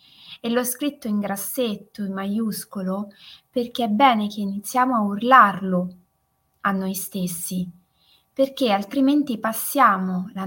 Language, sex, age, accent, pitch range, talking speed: Italian, female, 20-39, native, 180-225 Hz, 120 wpm